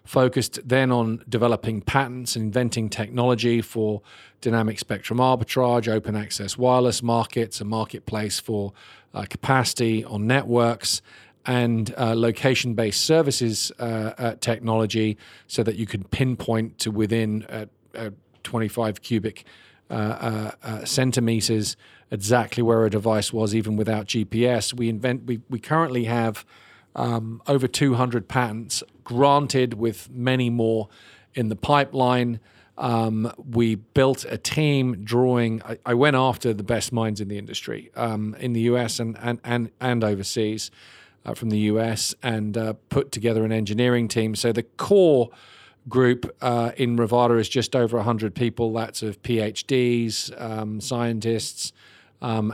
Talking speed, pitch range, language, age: 140 wpm, 110-125 Hz, English, 40-59